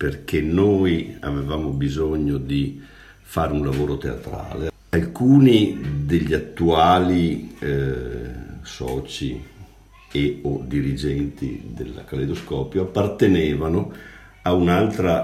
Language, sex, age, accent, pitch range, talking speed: Italian, male, 50-69, native, 70-90 Hz, 85 wpm